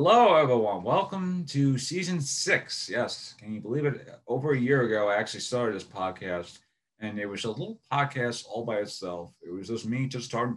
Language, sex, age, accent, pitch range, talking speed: English, male, 30-49, American, 105-125 Hz, 200 wpm